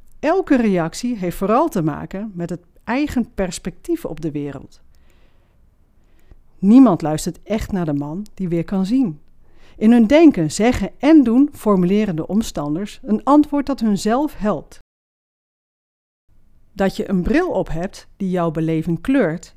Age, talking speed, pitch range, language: 40-59, 145 wpm, 165-225 Hz, Dutch